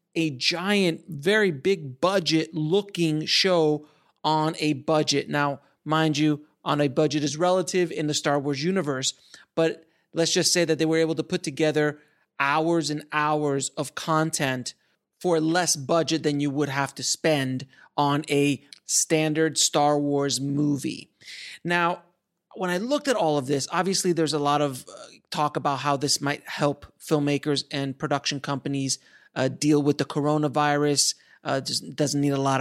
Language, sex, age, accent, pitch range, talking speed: English, male, 30-49, American, 140-160 Hz, 160 wpm